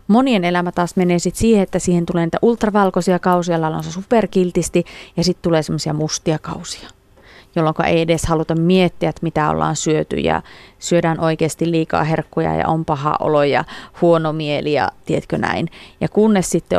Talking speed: 170 wpm